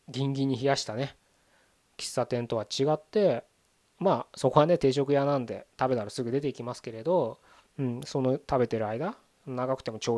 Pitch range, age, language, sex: 120-155 Hz, 20-39, Japanese, male